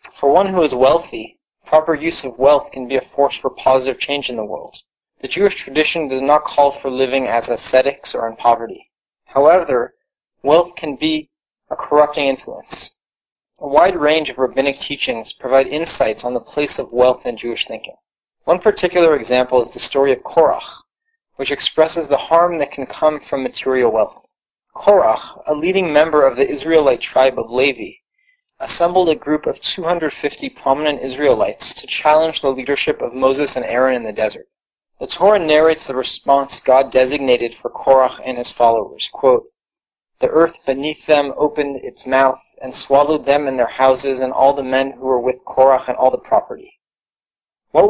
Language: English